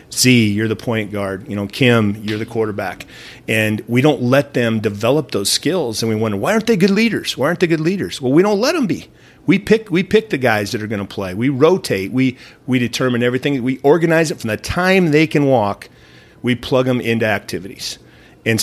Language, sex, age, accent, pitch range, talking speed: English, male, 40-59, American, 105-125 Hz, 225 wpm